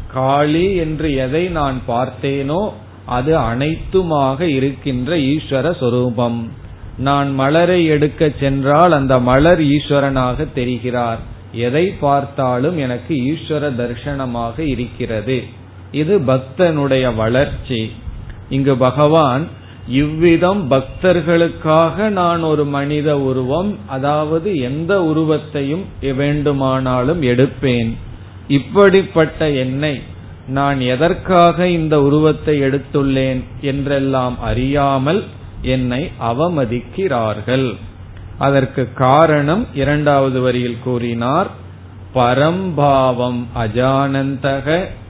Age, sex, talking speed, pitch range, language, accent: 30-49, male, 75 wpm, 120-150 Hz, Tamil, native